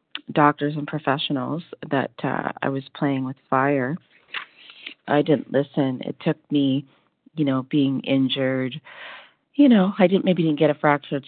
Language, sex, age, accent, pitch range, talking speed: English, female, 30-49, American, 135-155 Hz, 155 wpm